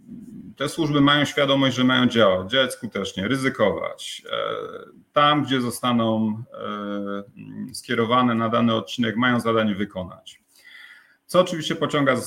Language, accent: Polish, native